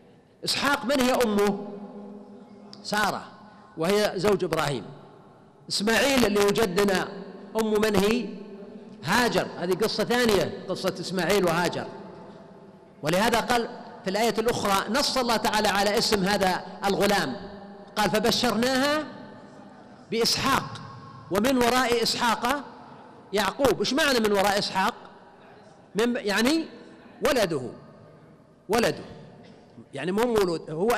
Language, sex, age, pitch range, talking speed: Arabic, male, 50-69, 195-235 Hz, 105 wpm